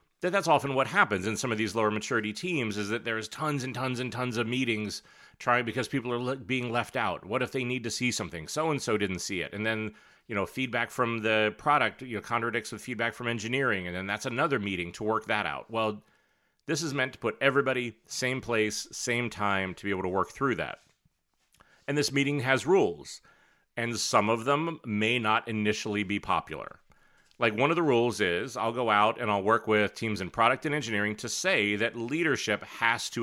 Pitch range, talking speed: 105-130 Hz, 215 wpm